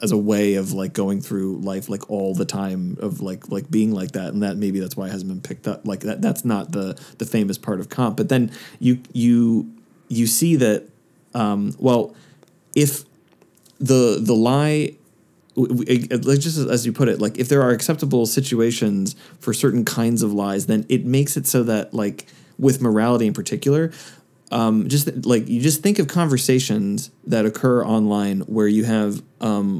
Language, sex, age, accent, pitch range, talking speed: English, male, 20-39, American, 105-135 Hz, 185 wpm